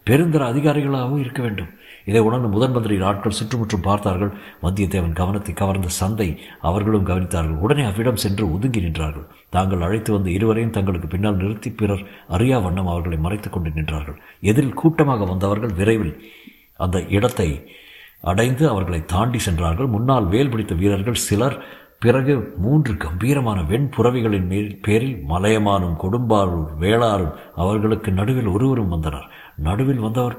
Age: 60-79